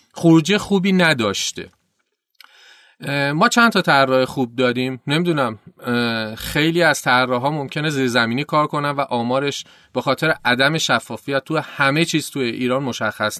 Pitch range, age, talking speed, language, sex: 120-165 Hz, 30-49, 135 wpm, Persian, male